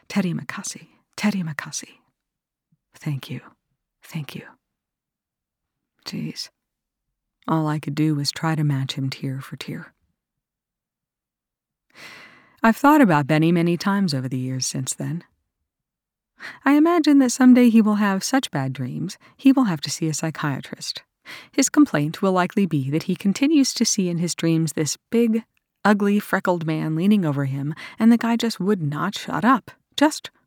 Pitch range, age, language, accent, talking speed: 150-220 Hz, 40-59, English, American, 155 wpm